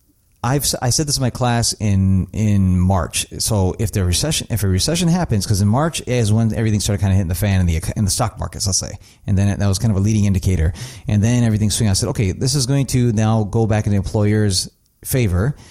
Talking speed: 250 wpm